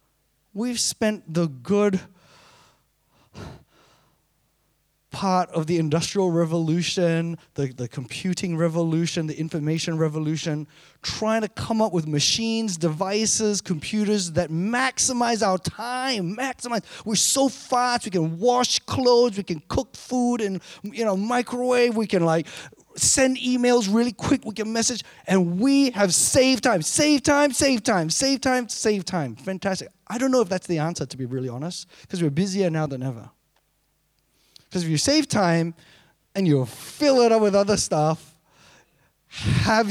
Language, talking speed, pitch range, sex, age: English, 150 wpm, 155-225 Hz, male, 20-39